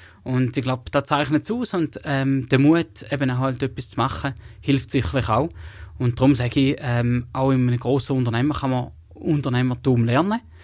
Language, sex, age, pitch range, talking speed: English, male, 20-39, 120-140 Hz, 190 wpm